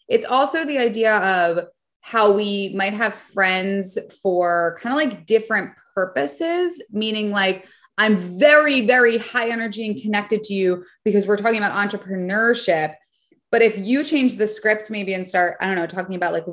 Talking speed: 170 wpm